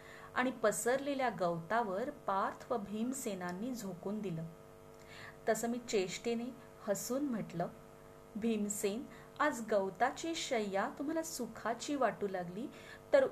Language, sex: Marathi, female